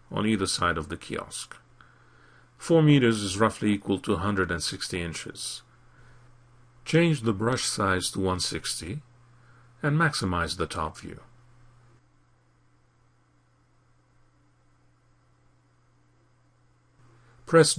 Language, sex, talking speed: English, male, 90 wpm